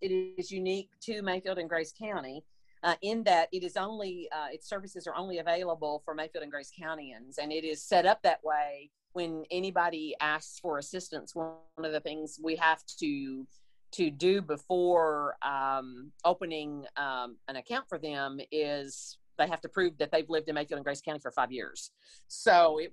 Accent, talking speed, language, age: American, 190 wpm, English, 40-59